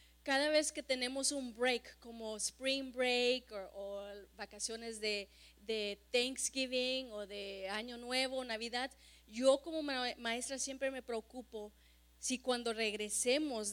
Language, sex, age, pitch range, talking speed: Spanish, female, 30-49, 225-280 Hz, 120 wpm